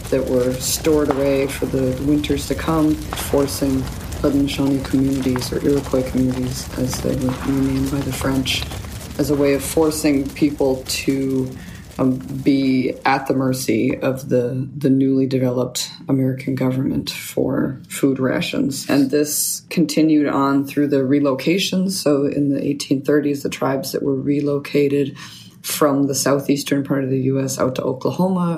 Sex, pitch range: female, 135-145 Hz